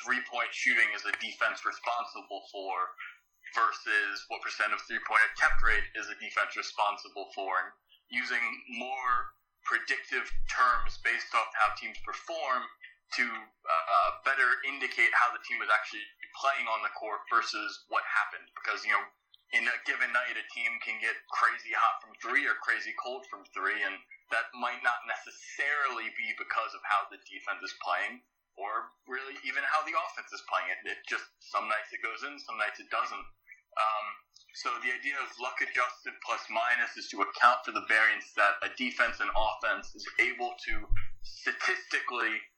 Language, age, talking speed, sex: English, 20-39, 175 wpm, male